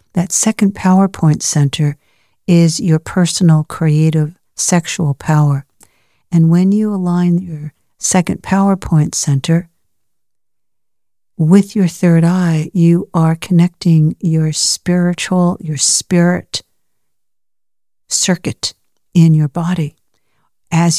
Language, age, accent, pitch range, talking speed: English, 60-79, American, 155-185 Hz, 95 wpm